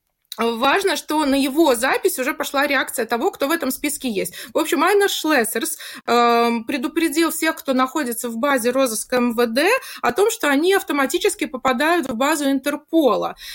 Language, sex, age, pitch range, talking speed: Russian, female, 20-39, 230-305 Hz, 155 wpm